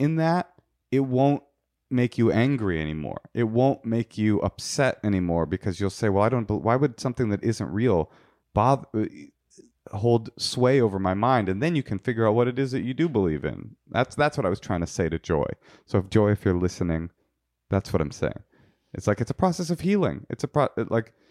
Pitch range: 100-135 Hz